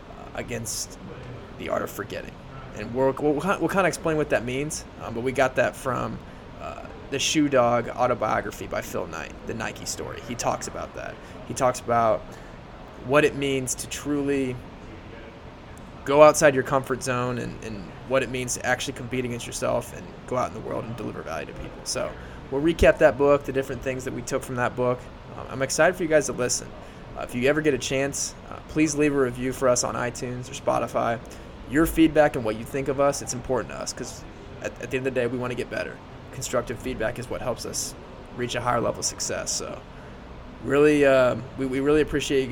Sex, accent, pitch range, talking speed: male, American, 120-140 Hz, 215 wpm